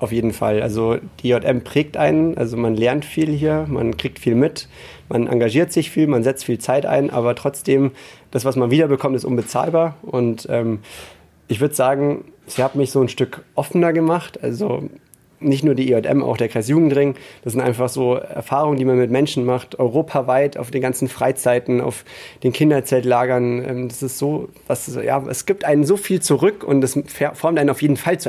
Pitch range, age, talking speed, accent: 125-150 Hz, 30-49, 195 wpm, German